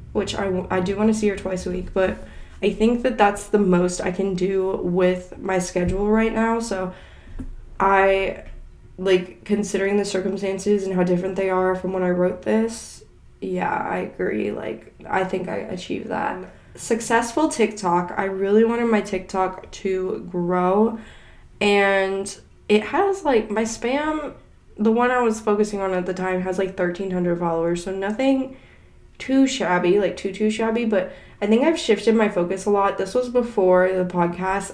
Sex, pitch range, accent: female, 180-210 Hz, American